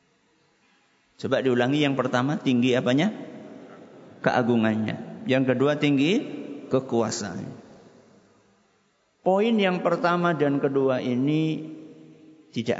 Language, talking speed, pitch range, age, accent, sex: Italian, 85 wpm, 110-140 Hz, 50-69, Indonesian, male